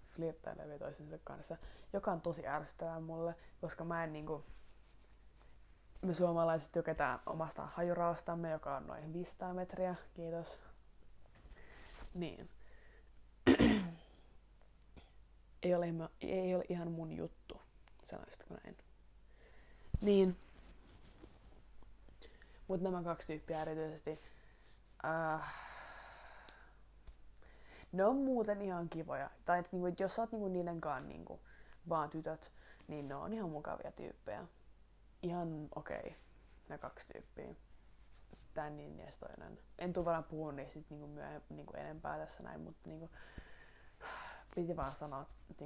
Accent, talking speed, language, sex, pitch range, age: native, 120 wpm, Finnish, female, 155-180 Hz, 20-39